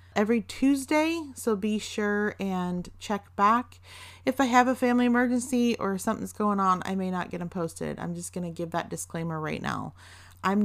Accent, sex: American, female